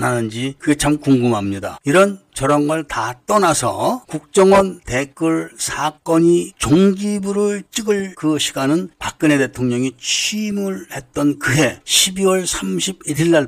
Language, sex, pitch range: Korean, male, 135-195 Hz